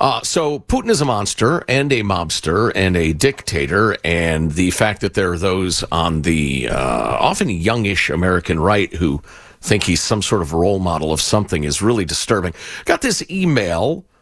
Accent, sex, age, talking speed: American, male, 50-69, 175 wpm